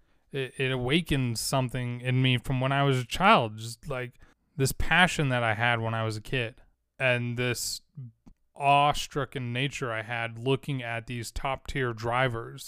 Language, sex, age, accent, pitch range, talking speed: English, male, 20-39, American, 120-140 Hz, 170 wpm